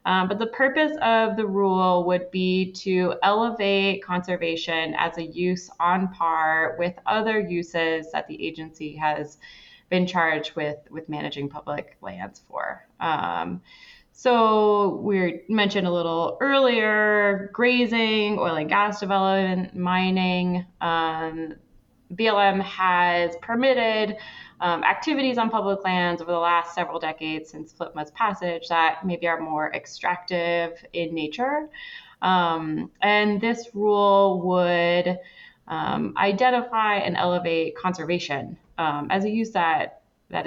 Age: 20-39